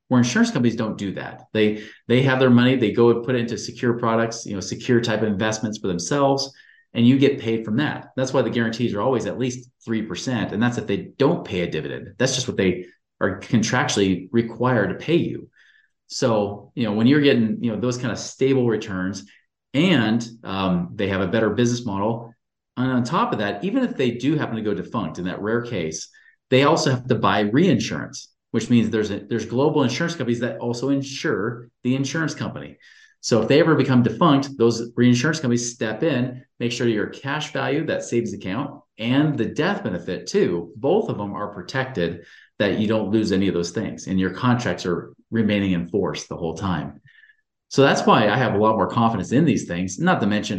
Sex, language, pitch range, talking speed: male, English, 105-125 Hz, 215 wpm